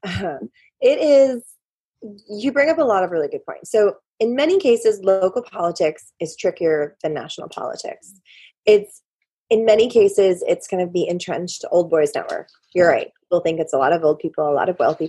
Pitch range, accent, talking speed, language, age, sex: 175-270 Hz, American, 200 wpm, English, 20-39, female